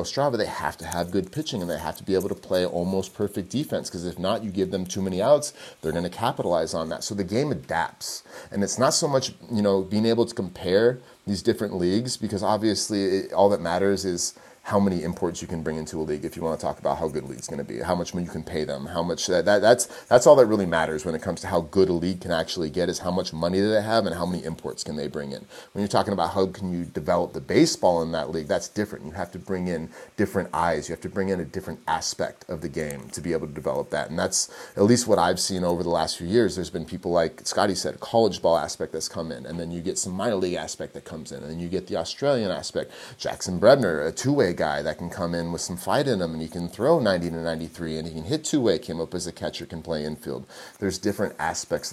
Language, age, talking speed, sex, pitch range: Czech, 30-49, 280 wpm, male, 85-100 Hz